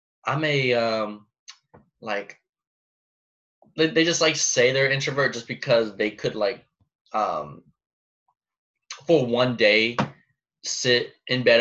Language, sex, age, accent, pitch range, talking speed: English, male, 20-39, American, 120-160 Hz, 115 wpm